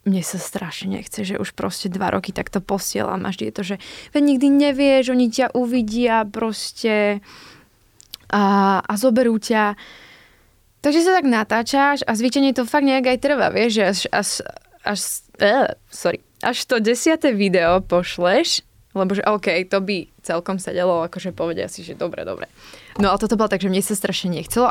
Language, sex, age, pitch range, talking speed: Slovak, female, 20-39, 185-230 Hz, 170 wpm